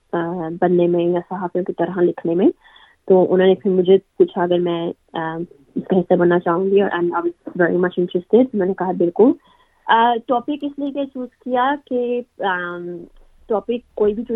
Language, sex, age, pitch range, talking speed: Urdu, female, 20-39, 180-210 Hz, 60 wpm